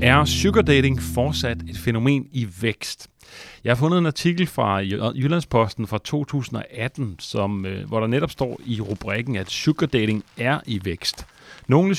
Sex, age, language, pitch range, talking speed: male, 30-49, Danish, 105-140 Hz, 145 wpm